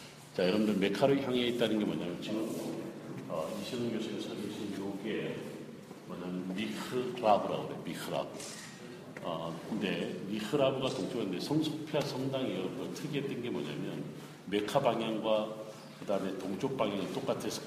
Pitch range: 105-135 Hz